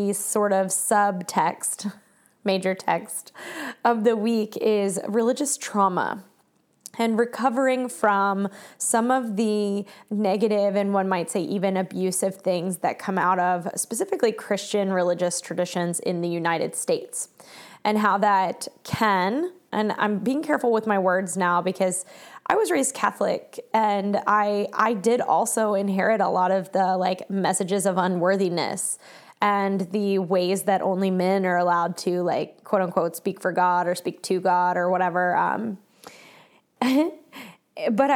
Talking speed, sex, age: 145 wpm, female, 20-39